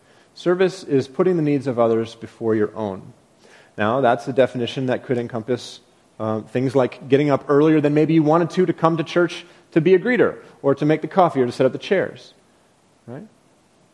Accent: American